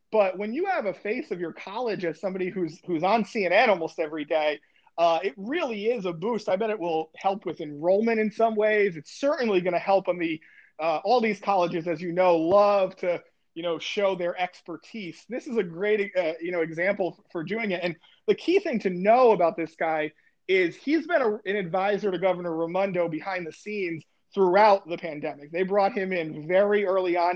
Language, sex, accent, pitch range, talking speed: English, male, American, 165-200 Hz, 215 wpm